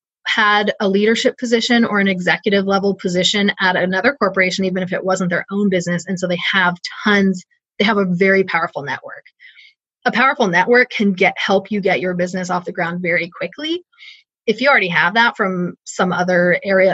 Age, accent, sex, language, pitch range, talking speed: 20-39, American, female, English, 180-225 Hz, 190 wpm